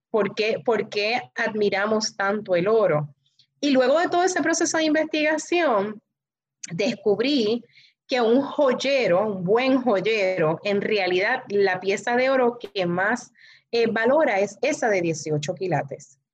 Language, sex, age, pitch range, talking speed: Spanish, female, 30-49, 190-245 Hz, 140 wpm